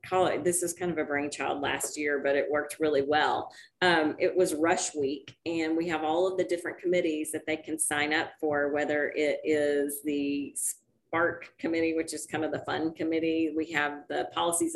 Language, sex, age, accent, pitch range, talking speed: English, female, 30-49, American, 150-175 Hz, 200 wpm